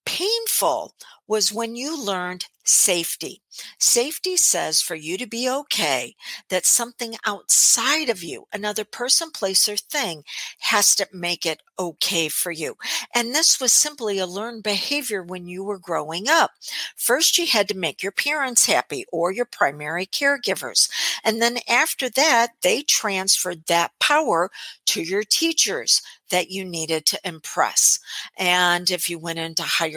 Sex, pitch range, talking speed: female, 180-255 Hz, 150 wpm